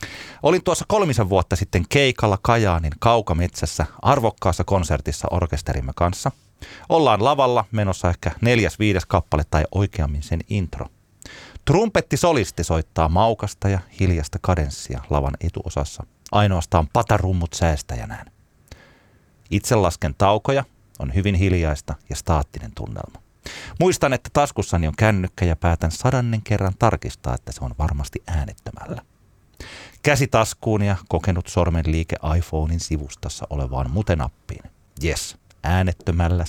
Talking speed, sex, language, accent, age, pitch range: 115 wpm, male, Finnish, native, 30-49, 85-120 Hz